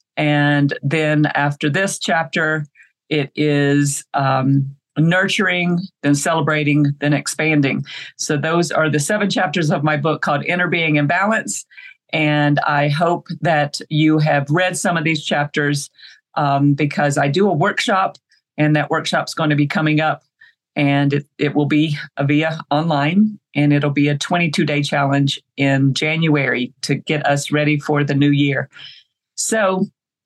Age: 50-69